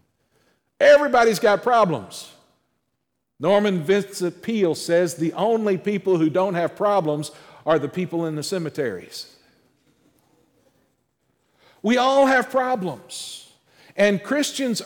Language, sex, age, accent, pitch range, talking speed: English, male, 50-69, American, 160-225 Hz, 105 wpm